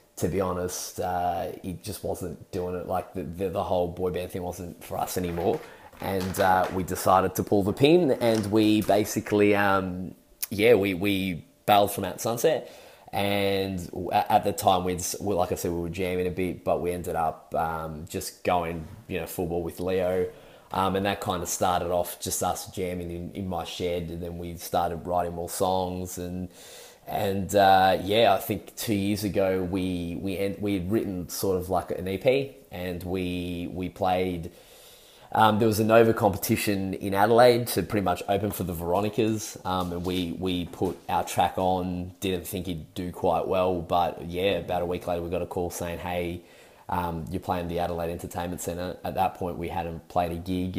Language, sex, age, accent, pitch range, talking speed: English, male, 20-39, Australian, 90-100 Hz, 195 wpm